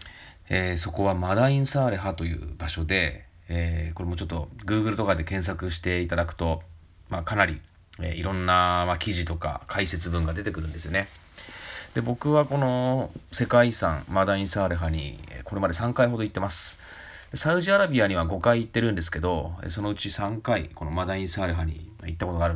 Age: 30-49